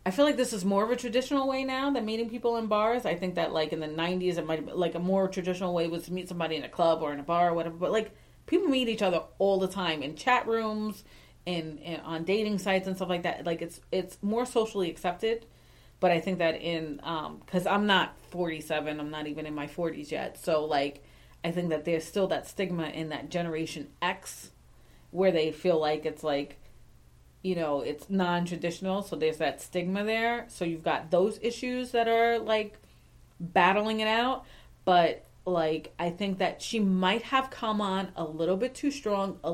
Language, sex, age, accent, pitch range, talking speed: English, female, 30-49, American, 165-205 Hz, 215 wpm